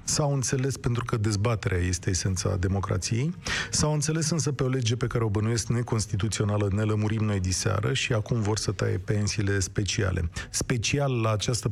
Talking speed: 170 wpm